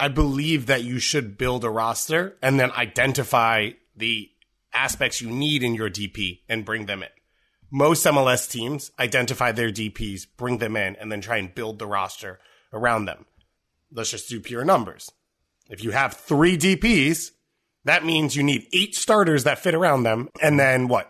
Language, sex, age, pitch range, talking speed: English, male, 30-49, 115-150 Hz, 180 wpm